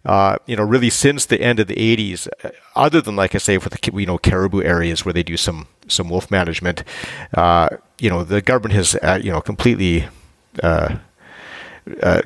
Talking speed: 195 wpm